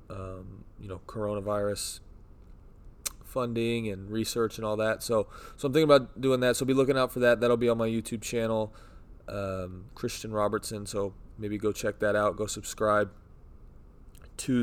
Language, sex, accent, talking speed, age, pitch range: English, male, American, 170 wpm, 20-39, 95-115 Hz